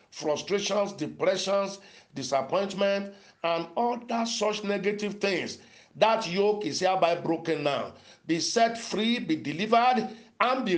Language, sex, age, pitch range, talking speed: English, male, 50-69, 165-220 Hz, 120 wpm